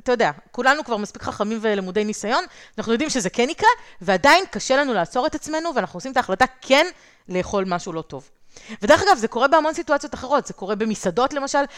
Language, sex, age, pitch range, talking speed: Hebrew, female, 30-49, 205-285 Hz, 200 wpm